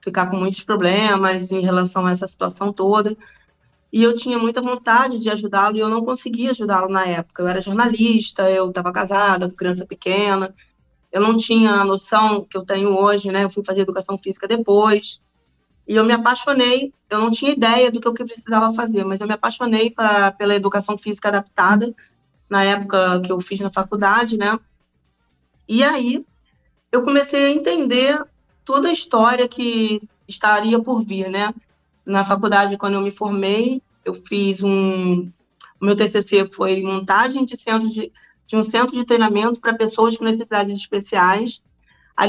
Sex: female